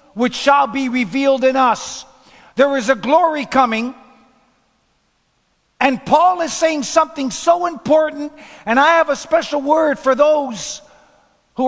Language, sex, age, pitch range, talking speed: English, male, 50-69, 220-285 Hz, 140 wpm